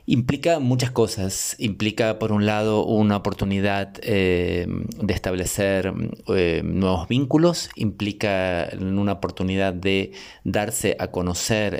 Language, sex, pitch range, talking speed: Spanish, male, 95-105 Hz, 110 wpm